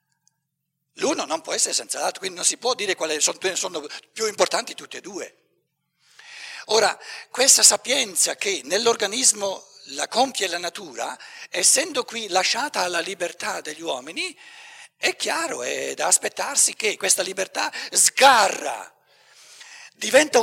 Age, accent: 60-79, native